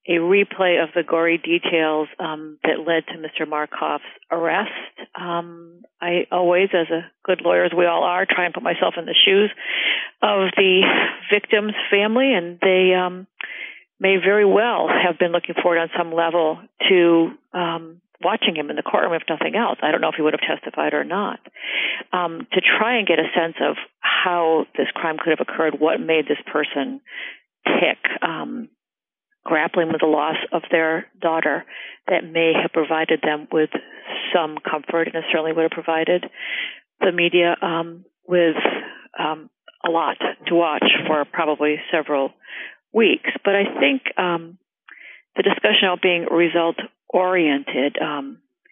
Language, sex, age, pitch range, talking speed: English, female, 50-69, 160-190 Hz, 160 wpm